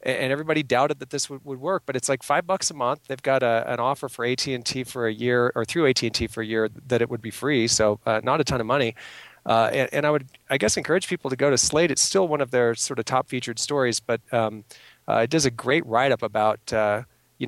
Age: 40-59